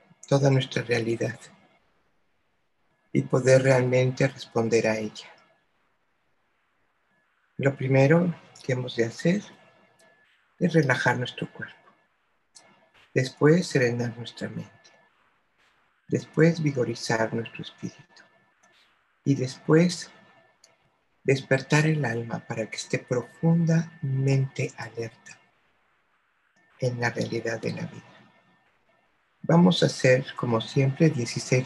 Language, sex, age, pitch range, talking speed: Spanish, male, 60-79, 120-155 Hz, 95 wpm